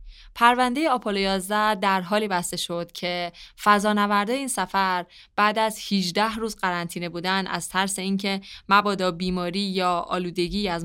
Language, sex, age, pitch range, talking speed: Persian, female, 20-39, 175-215 Hz, 135 wpm